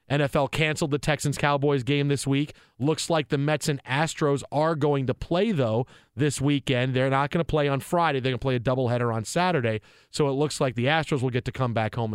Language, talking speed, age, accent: English, 230 wpm, 40-59, American